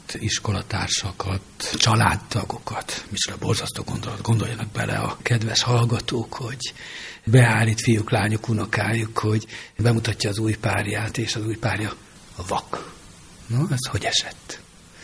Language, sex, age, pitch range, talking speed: Hungarian, male, 60-79, 110-135 Hz, 120 wpm